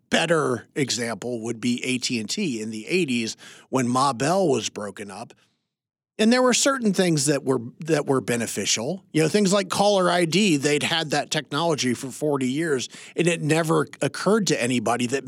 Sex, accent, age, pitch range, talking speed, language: male, American, 40-59, 125-160 Hz, 175 wpm, English